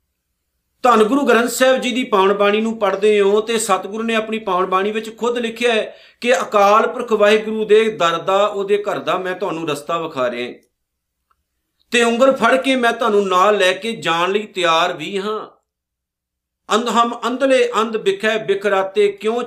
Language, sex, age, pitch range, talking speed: Punjabi, male, 50-69, 165-220 Hz, 175 wpm